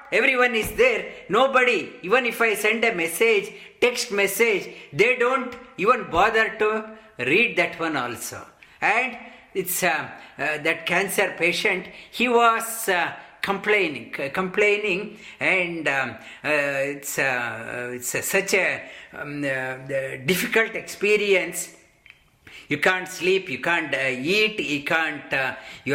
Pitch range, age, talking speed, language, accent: 145-210 Hz, 50-69, 130 wpm, English, Indian